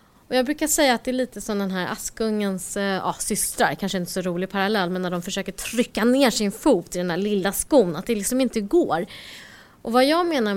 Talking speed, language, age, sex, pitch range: 235 wpm, English, 30-49, female, 185-275 Hz